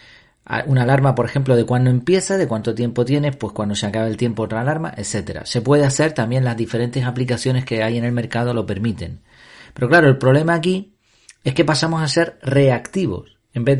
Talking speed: 205 wpm